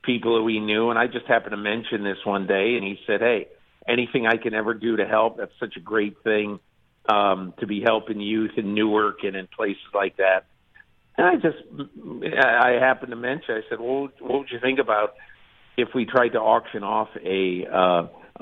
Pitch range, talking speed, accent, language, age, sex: 100-115 Hz, 200 wpm, American, English, 50-69, male